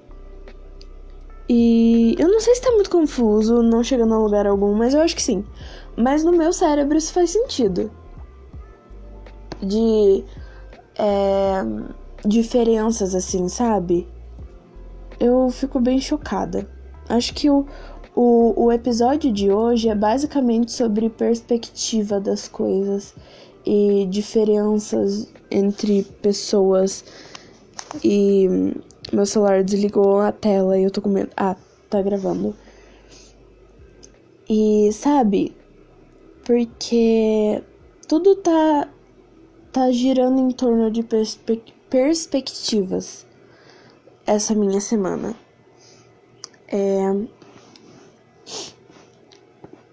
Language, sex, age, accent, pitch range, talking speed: Portuguese, female, 10-29, Brazilian, 200-245 Hz, 95 wpm